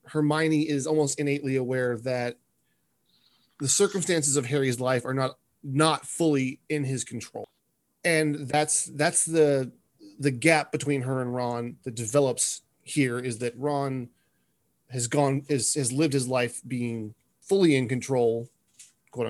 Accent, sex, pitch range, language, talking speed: American, male, 125-145 Hz, English, 145 wpm